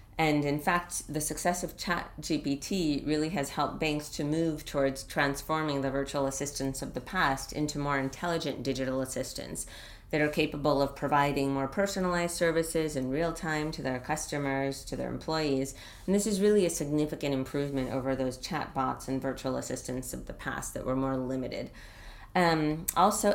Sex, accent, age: female, American, 30-49